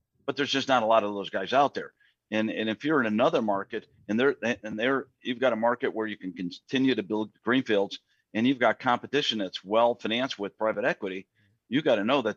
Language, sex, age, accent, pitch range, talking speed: English, male, 50-69, American, 105-125 Hz, 230 wpm